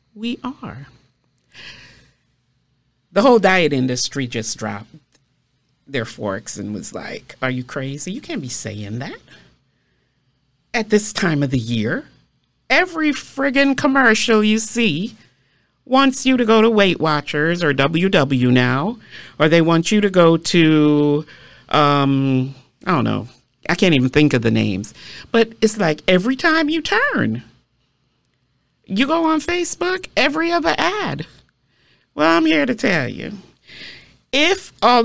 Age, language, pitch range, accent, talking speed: 50-69, English, 125-210 Hz, American, 140 wpm